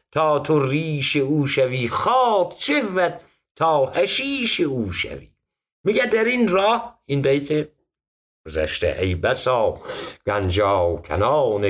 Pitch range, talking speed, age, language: 110-165 Hz, 115 wpm, 60-79, Persian